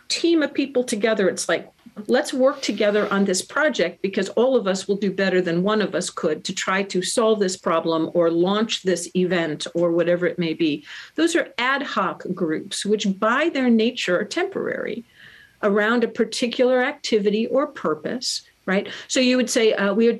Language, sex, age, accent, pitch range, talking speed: English, female, 50-69, American, 185-250 Hz, 190 wpm